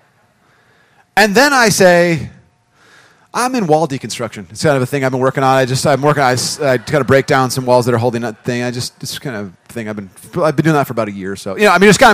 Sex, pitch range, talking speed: male, 130-185 Hz, 285 wpm